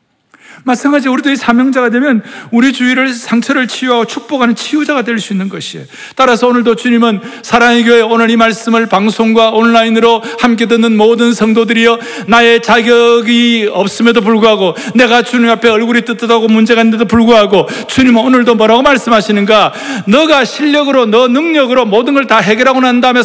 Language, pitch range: Korean, 200-255 Hz